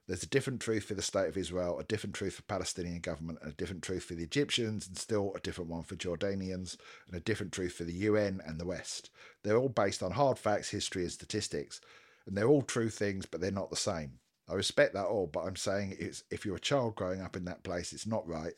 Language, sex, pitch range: English, male, 85-100 Hz